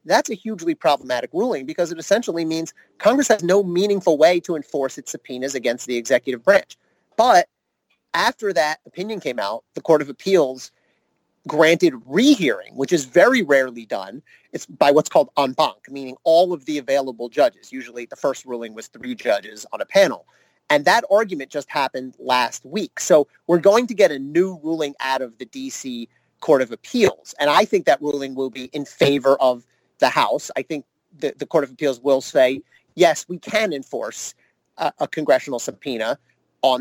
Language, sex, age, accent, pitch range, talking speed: English, male, 30-49, American, 135-190 Hz, 185 wpm